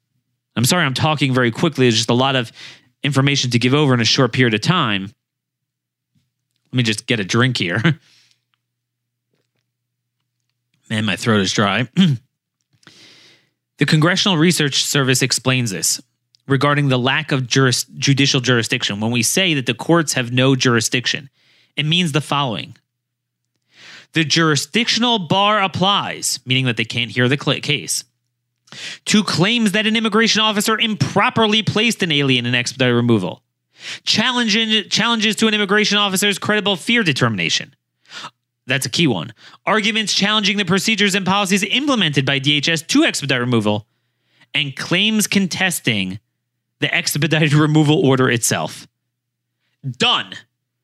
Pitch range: 125-195 Hz